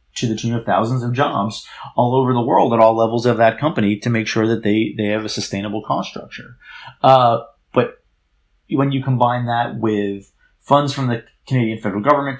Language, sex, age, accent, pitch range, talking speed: English, male, 30-49, American, 105-120 Hz, 200 wpm